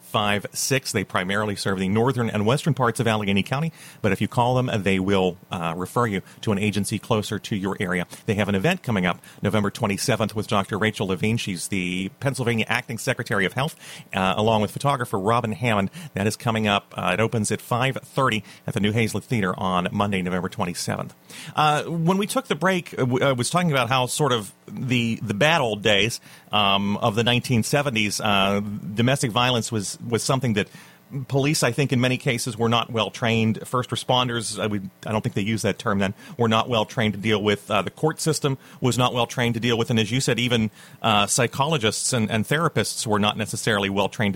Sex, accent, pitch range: male, American, 100-125 Hz